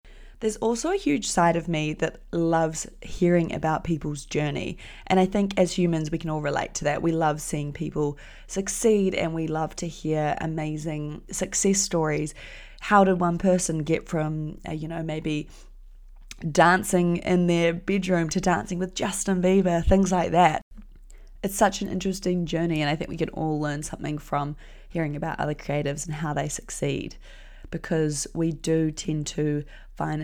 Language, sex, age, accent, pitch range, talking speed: English, female, 20-39, Australian, 155-185 Hz, 170 wpm